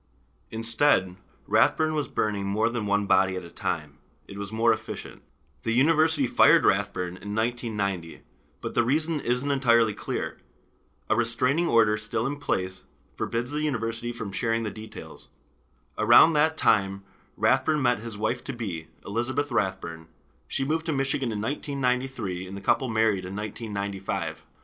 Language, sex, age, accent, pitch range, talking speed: English, male, 30-49, American, 95-120 Hz, 150 wpm